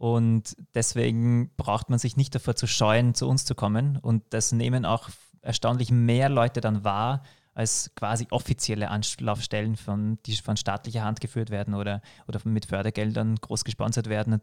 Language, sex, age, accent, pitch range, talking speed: German, male, 30-49, German, 110-130 Hz, 165 wpm